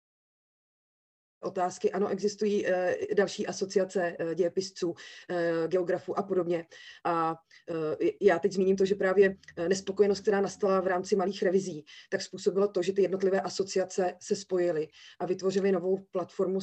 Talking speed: 145 wpm